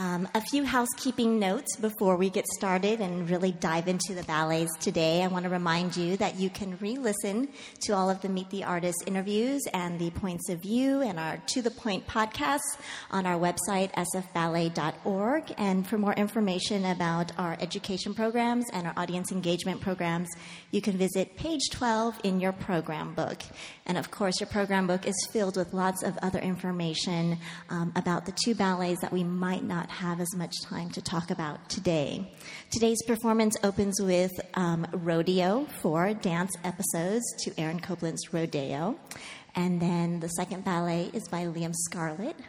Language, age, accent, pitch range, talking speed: English, 30-49, American, 170-210 Hz, 170 wpm